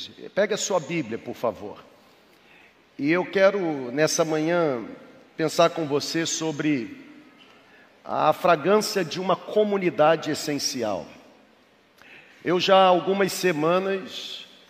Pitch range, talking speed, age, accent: 165-195 Hz, 105 wpm, 50-69, Brazilian